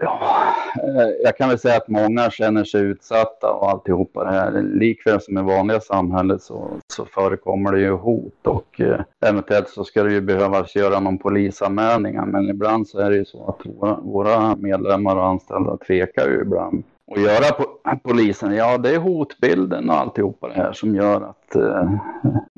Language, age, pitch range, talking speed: Swedish, 30-49, 95-115 Hz, 180 wpm